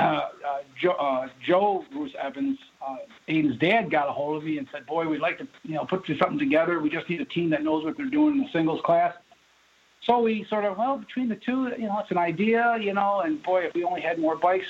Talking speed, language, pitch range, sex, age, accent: 255 wpm, English, 145-205 Hz, male, 60-79, American